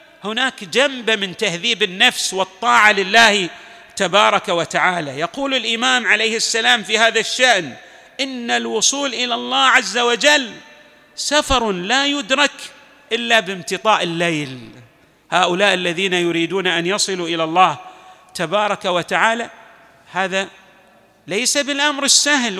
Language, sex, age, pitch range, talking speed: Arabic, male, 40-59, 190-260 Hz, 110 wpm